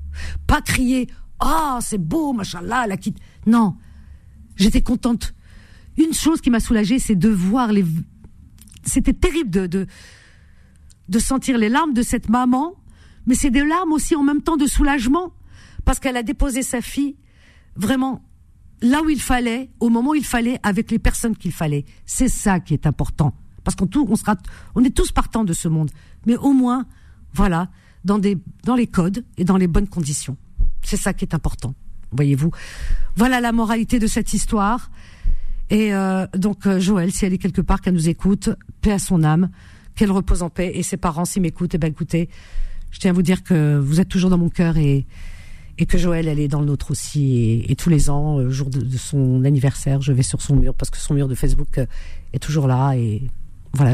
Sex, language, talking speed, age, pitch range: female, French, 205 wpm, 50-69, 140-235 Hz